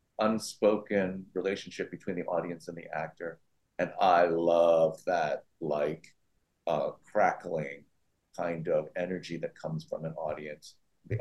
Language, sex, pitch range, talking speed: English, male, 85-110 Hz, 130 wpm